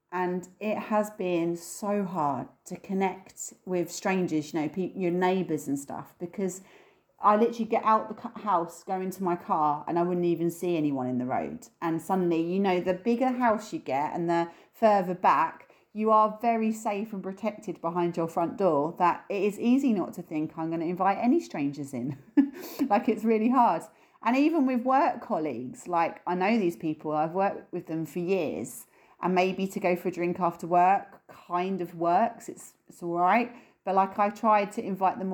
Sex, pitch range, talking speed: female, 170-225 Hz, 195 wpm